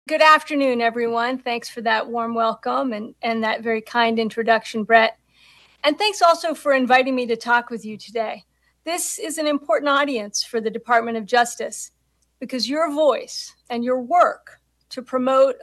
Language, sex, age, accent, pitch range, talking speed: English, female, 50-69, American, 230-285 Hz, 170 wpm